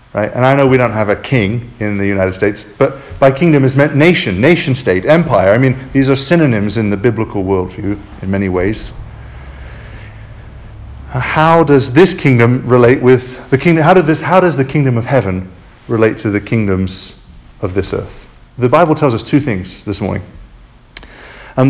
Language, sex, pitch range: English, male, 110-140 Hz